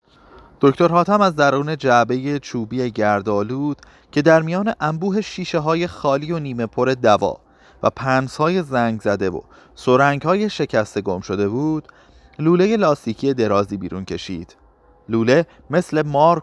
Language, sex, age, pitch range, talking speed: Persian, male, 30-49, 105-150 Hz, 140 wpm